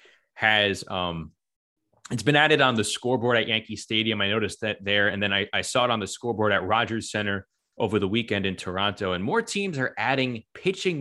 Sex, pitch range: male, 100-130 Hz